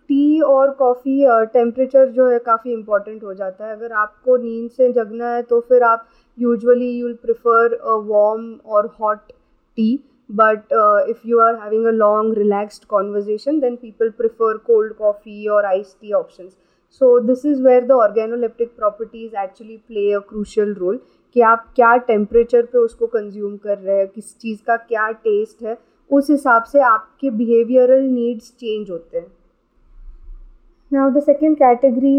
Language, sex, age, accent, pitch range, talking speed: Hindi, female, 20-39, native, 210-245 Hz, 160 wpm